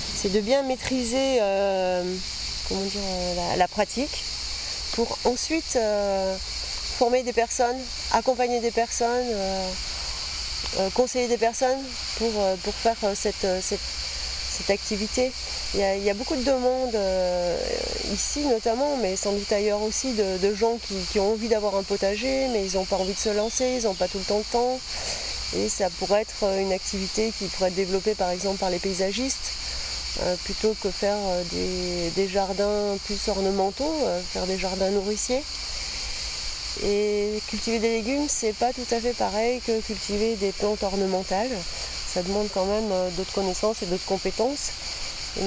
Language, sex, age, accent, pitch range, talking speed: French, female, 30-49, French, 185-230 Hz, 160 wpm